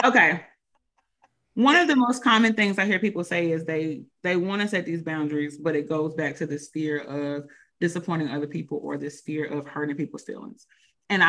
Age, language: 30-49, English